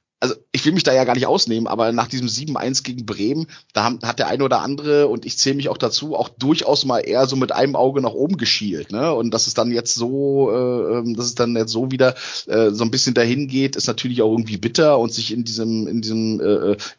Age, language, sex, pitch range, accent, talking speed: 30-49, German, male, 110-135 Hz, German, 250 wpm